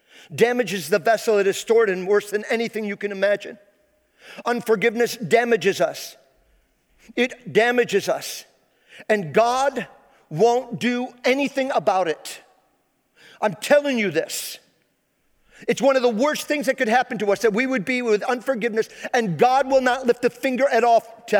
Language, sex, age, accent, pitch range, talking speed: English, male, 50-69, American, 210-255 Hz, 160 wpm